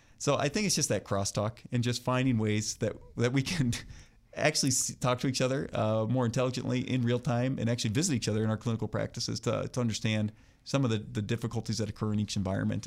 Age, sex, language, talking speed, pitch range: 30-49, male, English, 225 wpm, 105-125 Hz